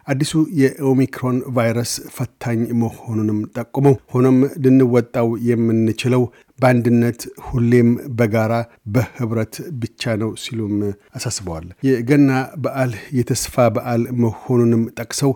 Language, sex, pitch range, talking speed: Amharic, male, 115-130 Hz, 90 wpm